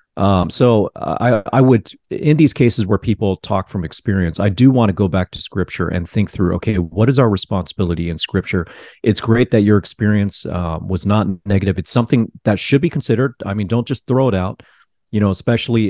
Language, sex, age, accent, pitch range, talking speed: English, male, 40-59, American, 90-110 Hz, 210 wpm